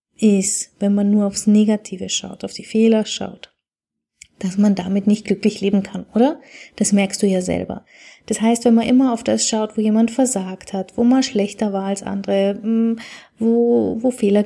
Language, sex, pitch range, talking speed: German, female, 195-230 Hz, 185 wpm